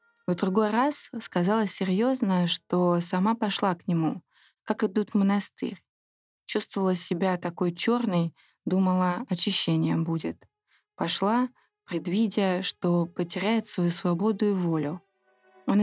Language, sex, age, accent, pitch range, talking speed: Russian, female, 20-39, native, 175-210 Hz, 115 wpm